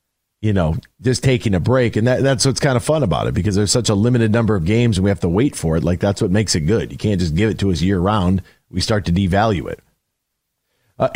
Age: 40-59